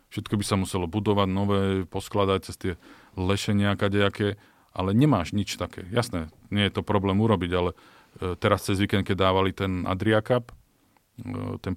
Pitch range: 95-110 Hz